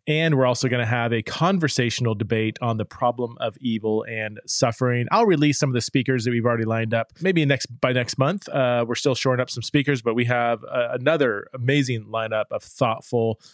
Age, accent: 30-49, American